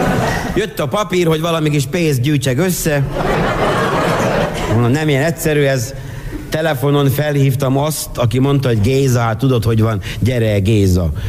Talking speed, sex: 145 wpm, male